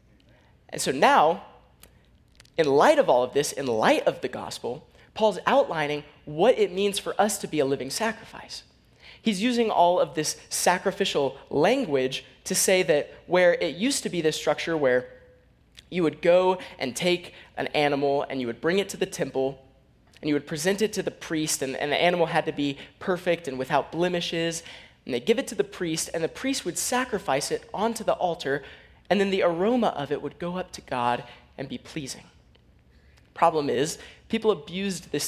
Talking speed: 190 wpm